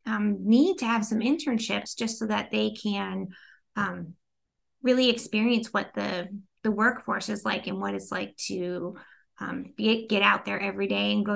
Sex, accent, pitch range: female, American, 200-255 Hz